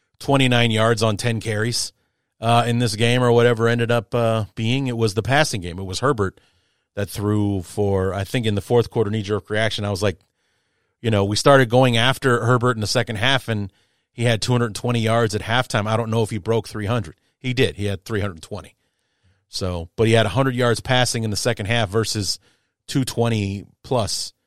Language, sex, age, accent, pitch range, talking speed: English, male, 30-49, American, 100-120 Hz, 195 wpm